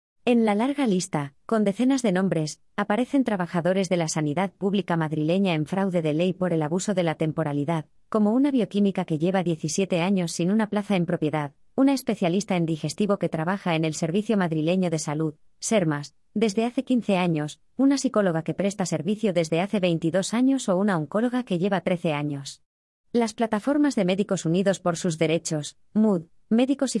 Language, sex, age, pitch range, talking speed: Spanish, female, 20-39, 165-210 Hz, 180 wpm